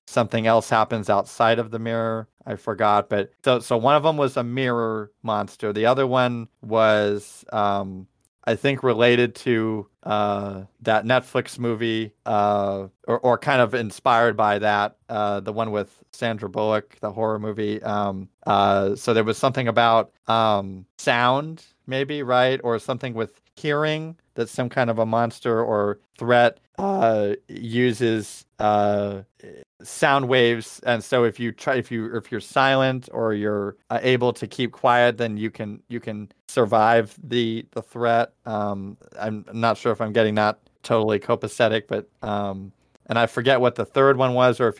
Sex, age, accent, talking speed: male, 40-59, American, 165 wpm